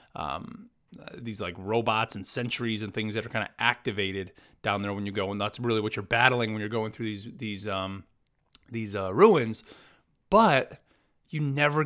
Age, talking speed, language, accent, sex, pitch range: 30-49, 185 wpm, English, American, male, 110-150 Hz